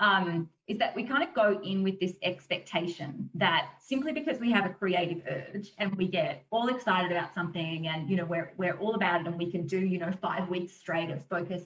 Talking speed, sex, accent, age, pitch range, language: 230 wpm, female, Australian, 30-49, 170-220 Hz, English